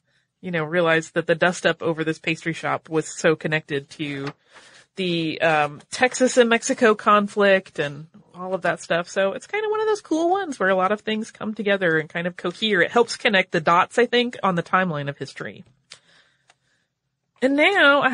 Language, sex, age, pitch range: English, female, 30-49, 170-240 Hz